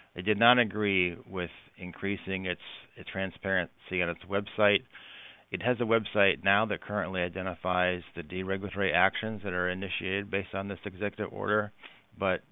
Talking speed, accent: 155 wpm, American